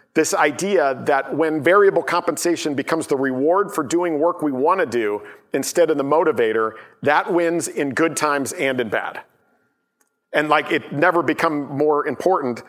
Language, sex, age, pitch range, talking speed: English, male, 50-69, 140-190 Hz, 165 wpm